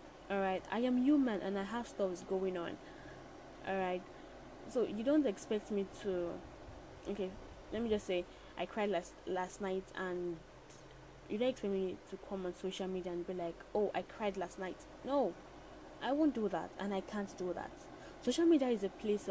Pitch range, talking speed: 185-225 Hz, 185 wpm